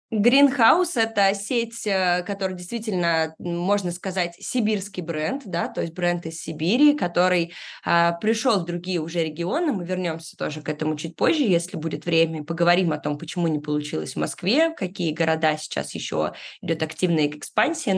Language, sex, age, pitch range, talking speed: Russian, female, 20-39, 165-215 Hz, 160 wpm